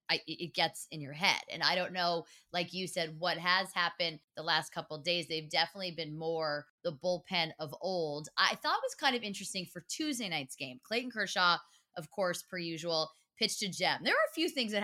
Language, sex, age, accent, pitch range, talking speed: English, female, 20-39, American, 170-220 Hz, 220 wpm